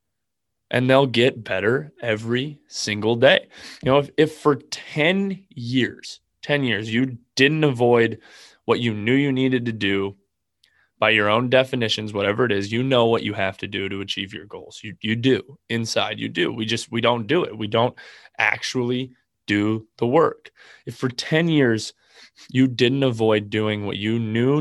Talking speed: 180 wpm